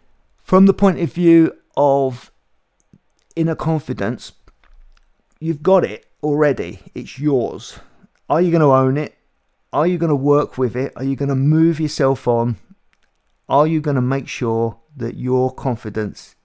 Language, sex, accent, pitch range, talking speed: English, male, British, 125-155 Hz, 155 wpm